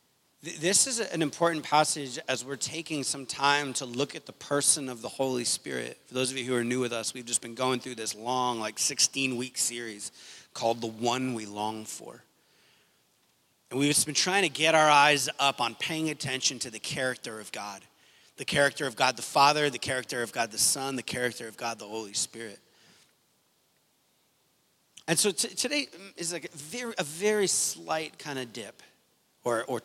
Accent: American